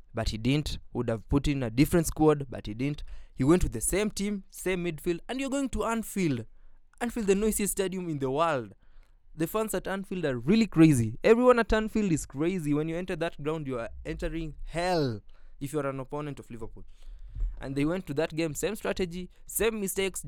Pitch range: 115-175 Hz